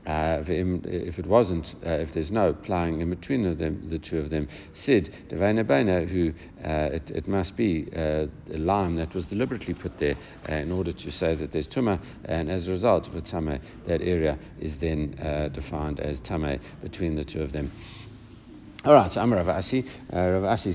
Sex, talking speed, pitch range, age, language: male, 195 wpm, 80-95 Hz, 60-79, English